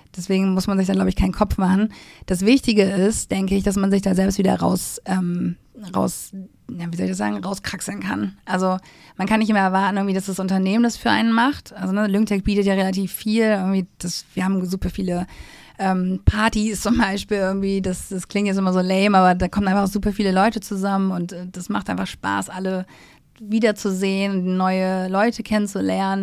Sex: female